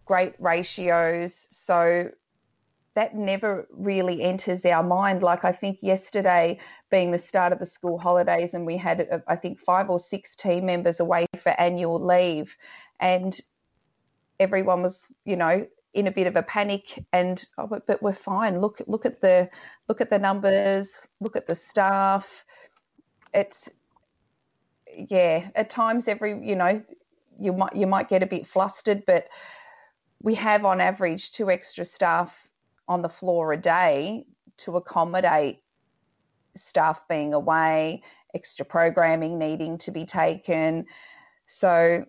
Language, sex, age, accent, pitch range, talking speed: English, female, 30-49, Australian, 175-205 Hz, 145 wpm